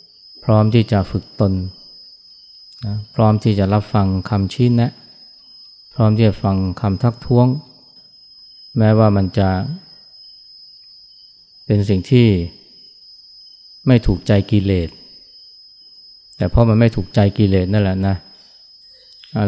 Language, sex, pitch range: Thai, male, 95-110 Hz